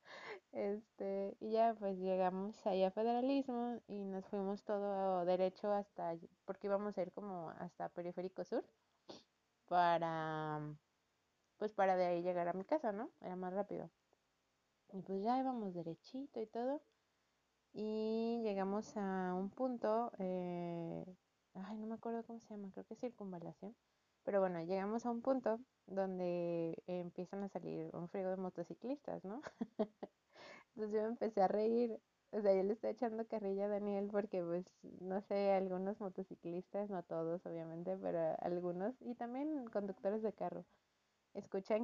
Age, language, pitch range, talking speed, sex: 20-39, Spanish, 180-215 Hz, 155 wpm, female